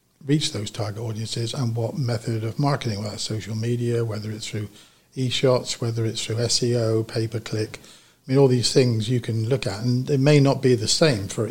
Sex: male